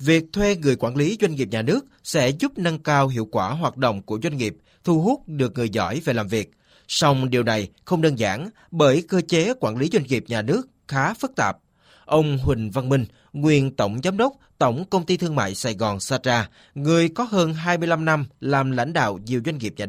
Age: 20-39